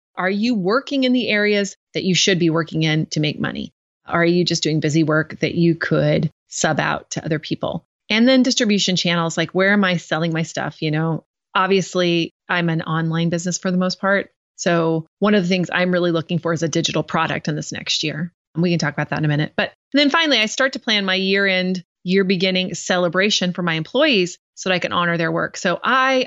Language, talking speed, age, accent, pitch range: English, 225 wpm, 30-49, American, 165-205 Hz